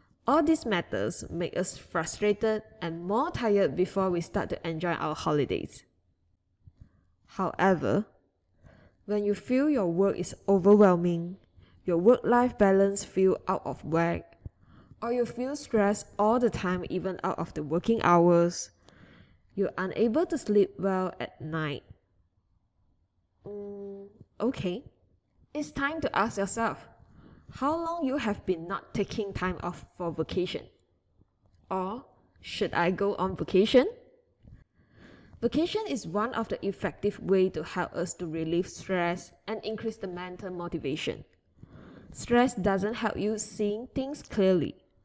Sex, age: female, 10-29